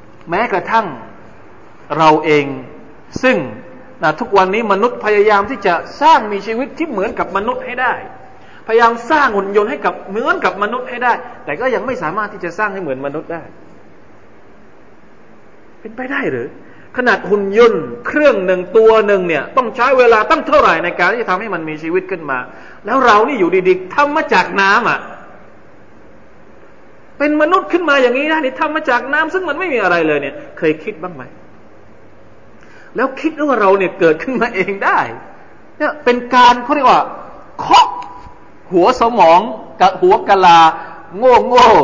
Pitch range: 180-280 Hz